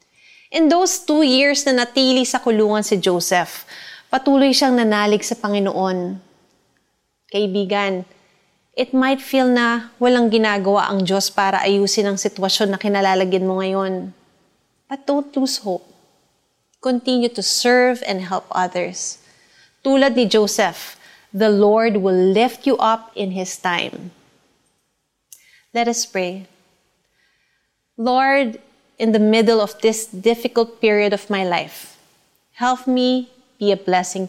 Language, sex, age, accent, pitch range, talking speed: Filipino, female, 30-49, native, 200-250 Hz, 125 wpm